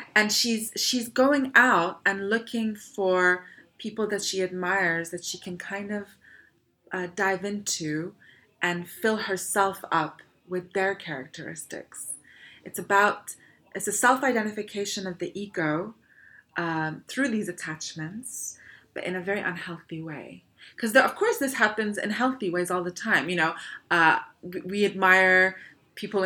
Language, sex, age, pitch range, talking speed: English, female, 30-49, 165-200 Hz, 145 wpm